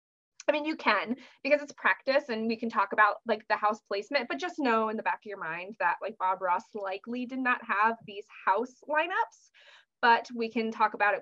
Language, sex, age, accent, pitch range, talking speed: English, female, 20-39, American, 210-275 Hz, 225 wpm